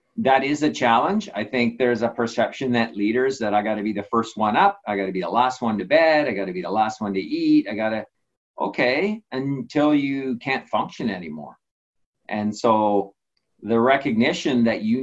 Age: 40-59